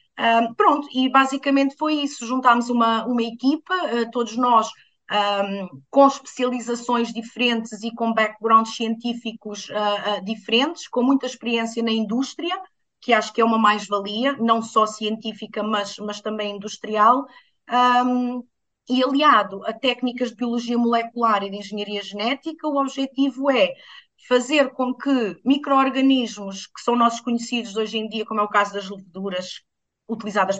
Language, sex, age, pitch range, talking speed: English, female, 20-39, 220-275 Hz, 135 wpm